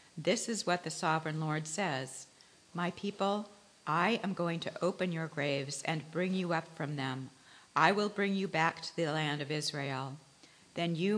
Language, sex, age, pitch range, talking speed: English, female, 40-59, 145-175 Hz, 185 wpm